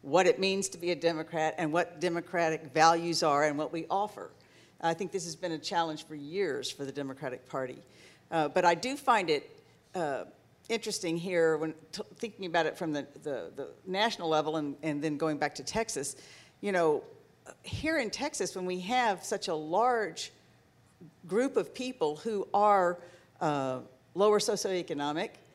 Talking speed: 170 wpm